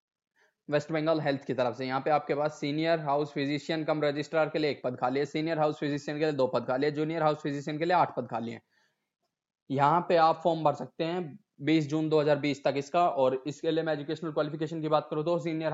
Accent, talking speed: native, 175 wpm